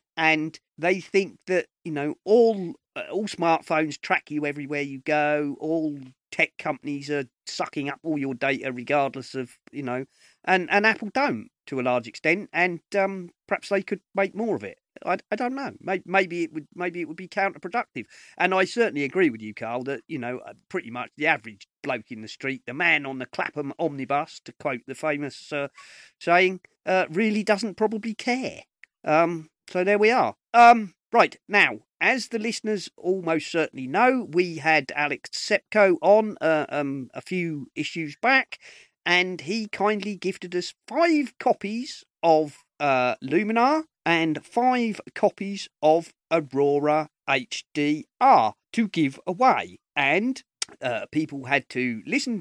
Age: 40-59